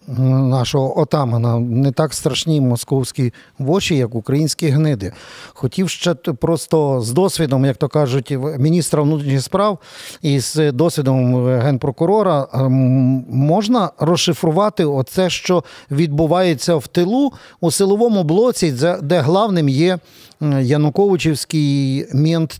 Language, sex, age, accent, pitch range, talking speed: Ukrainian, male, 50-69, native, 135-175 Hz, 105 wpm